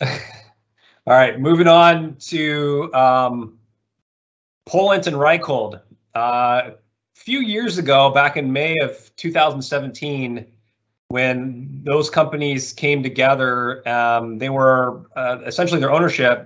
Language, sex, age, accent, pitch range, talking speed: English, male, 30-49, American, 115-145 Hz, 110 wpm